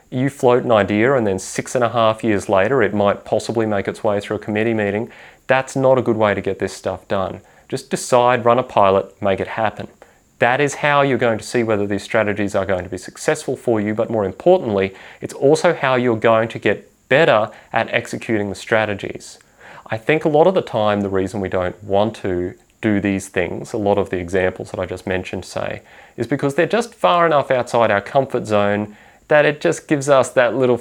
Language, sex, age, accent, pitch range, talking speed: English, male, 30-49, Australian, 100-125 Hz, 225 wpm